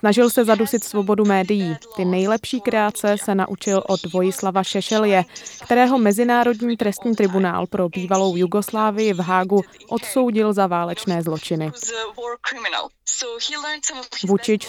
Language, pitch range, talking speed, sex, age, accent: Czech, 185-225 Hz, 110 wpm, female, 20-39, native